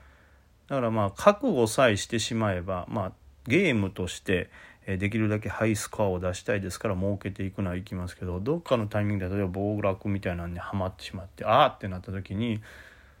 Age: 30-49